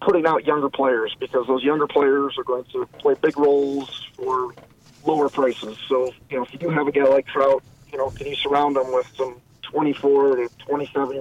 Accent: American